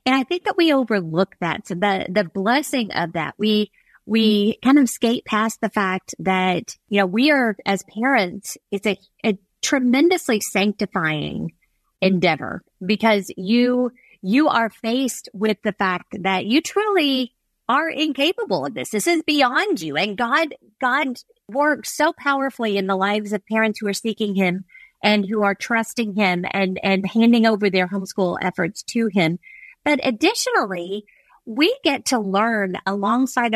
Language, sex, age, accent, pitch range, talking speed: English, female, 40-59, American, 205-290 Hz, 160 wpm